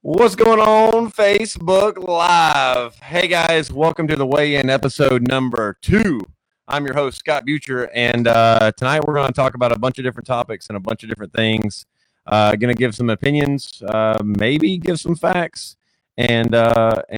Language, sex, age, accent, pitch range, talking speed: English, male, 30-49, American, 95-125 Hz, 180 wpm